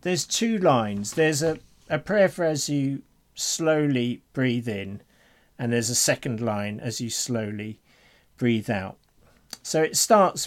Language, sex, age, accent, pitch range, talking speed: English, male, 50-69, British, 110-140 Hz, 150 wpm